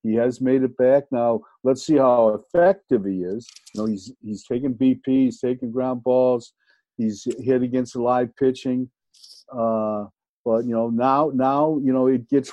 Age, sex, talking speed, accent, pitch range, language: 50-69, male, 180 wpm, American, 115-140 Hz, English